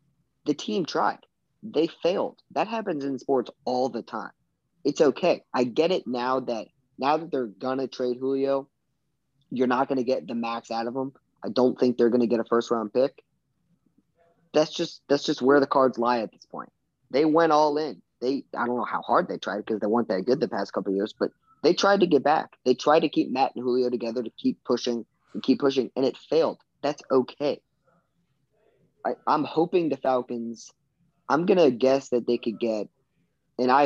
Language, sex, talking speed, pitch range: English, male, 215 wpm, 120-140 Hz